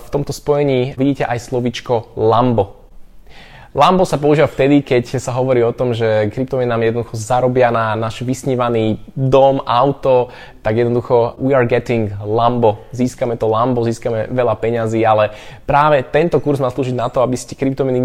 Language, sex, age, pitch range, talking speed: Slovak, male, 20-39, 115-135 Hz, 165 wpm